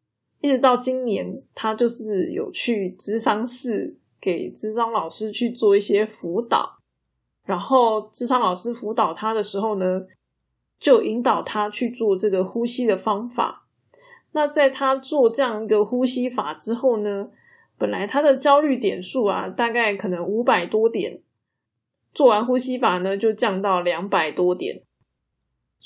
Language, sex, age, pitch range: Chinese, female, 20-39, 195-255 Hz